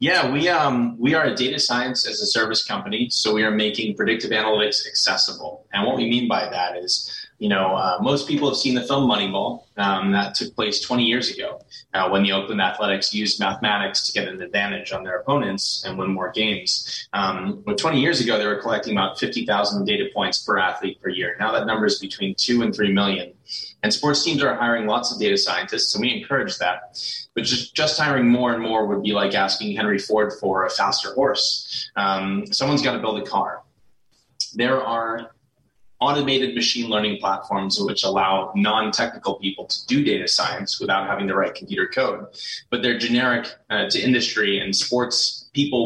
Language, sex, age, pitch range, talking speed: English, male, 20-39, 100-125 Hz, 200 wpm